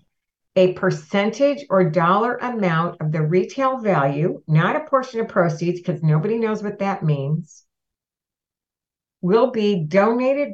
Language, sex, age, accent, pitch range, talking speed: English, female, 50-69, American, 155-185 Hz, 130 wpm